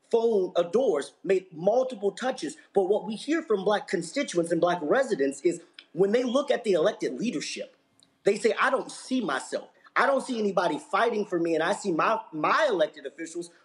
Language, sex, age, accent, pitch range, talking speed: English, male, 30-49, American, 170-220 Hz, 190 wpm